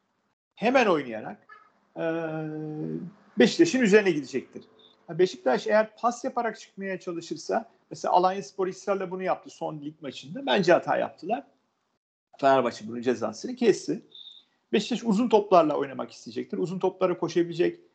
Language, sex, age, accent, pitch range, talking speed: Turkish, male, 40-59, native, 145-205 Hz, 120 wpm